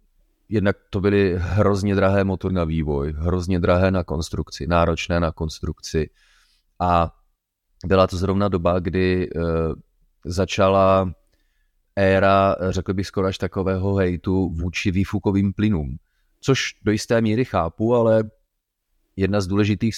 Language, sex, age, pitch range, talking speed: Czech, male, 30-49, 90-100 Hz, 125 wpm